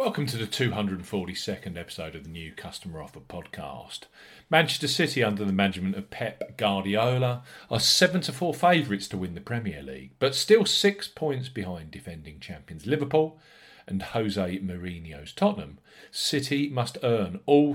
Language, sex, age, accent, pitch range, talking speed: English, male, 40-59, British, 95-135 Hz, 150 wpm